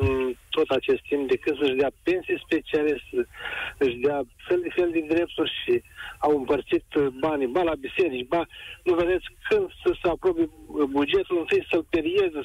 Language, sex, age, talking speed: Romanian, male, 60-79, 165 wpm